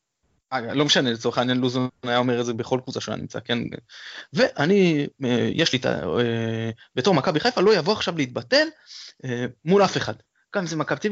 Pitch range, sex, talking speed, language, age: 120-175 Hz, male, 180 wpm, Hebrew, 20-39